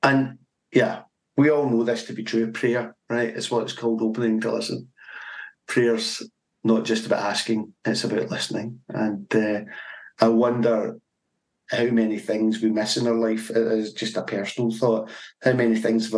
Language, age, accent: English, 40-59, British